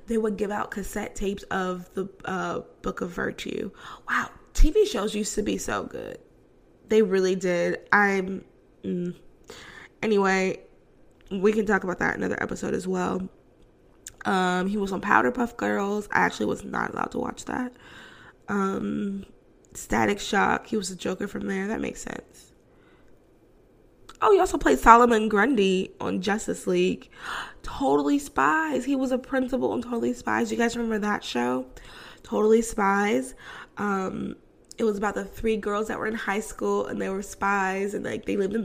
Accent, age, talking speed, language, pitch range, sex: American, 20-39, 170 wpm, English, 185-220 Hz, female